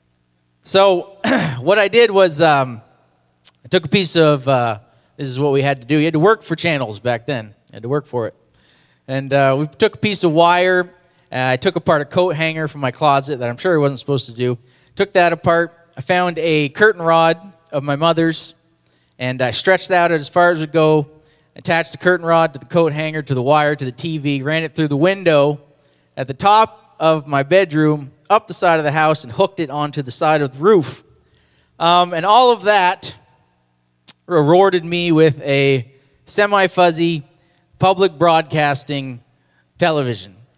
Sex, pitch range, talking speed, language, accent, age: male, 135-180 Hz, 200 wpm, English, American, 30-49